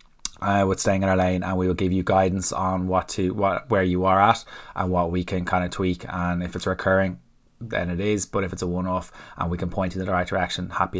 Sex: male